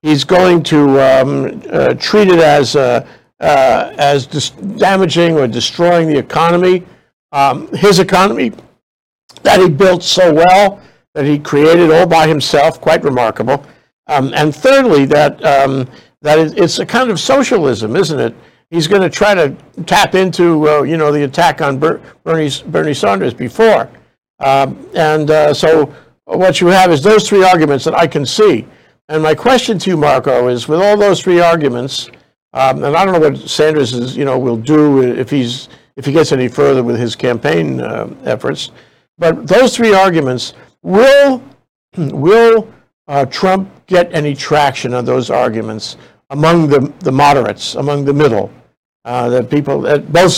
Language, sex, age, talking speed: English, male, 60-79, 165 wpm